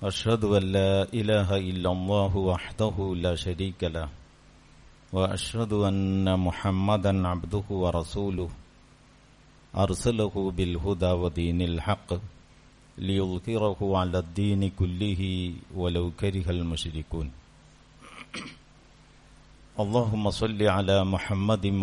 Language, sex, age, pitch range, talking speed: Malayalam, male, 50-69, 90-105 Hz, 90 wpm